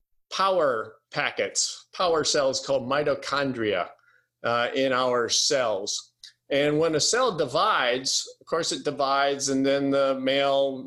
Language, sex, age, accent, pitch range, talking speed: English, male, 50-69, American, 135-175 Hz, 125 wpm